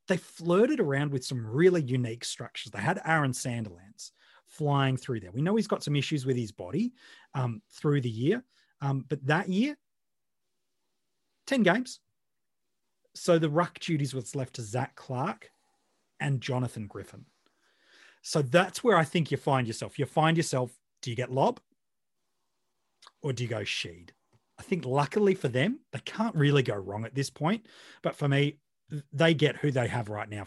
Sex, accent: male, Australian